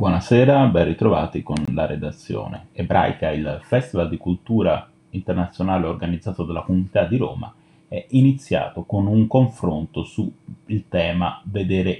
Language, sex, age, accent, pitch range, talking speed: Italian, male, 30-49, native, 90-110 Hz, 125 wpm